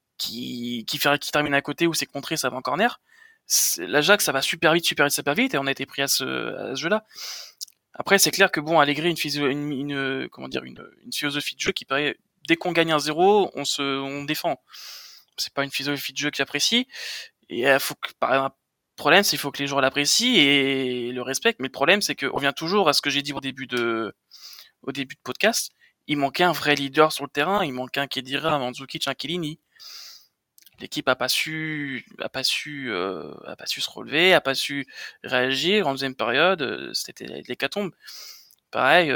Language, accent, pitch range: French, French, 135-165 Hz